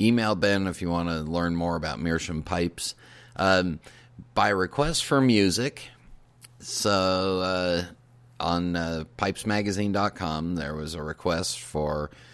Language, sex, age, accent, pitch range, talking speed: English, male, 40-59, American, 85-110 Hz, 125 wpm